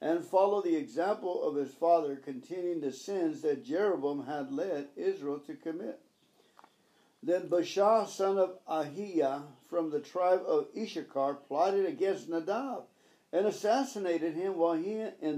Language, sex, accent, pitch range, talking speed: English, male, American, 155-220 Hz, 140 wpm